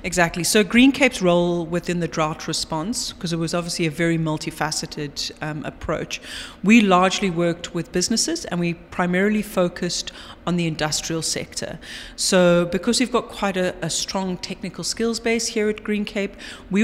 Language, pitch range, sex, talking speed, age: English, 165-200 Hz, female, 170 wpm, 30-49